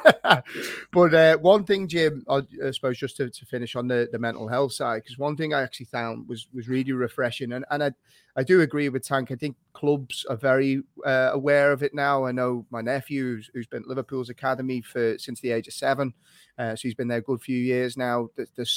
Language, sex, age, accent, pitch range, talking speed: English, male, 30-49, British, 125-145 Hz, 230 wpm